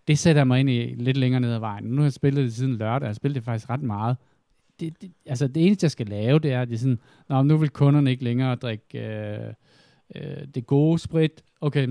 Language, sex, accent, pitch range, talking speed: Danish, male, native, 115-140 Hz, 255 wpm